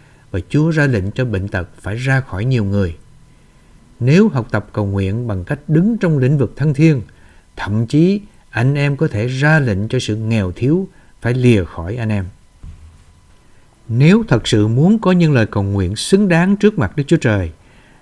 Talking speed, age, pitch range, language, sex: 195 wpm, 60-79, 100-150 Hz, Vietnamese, male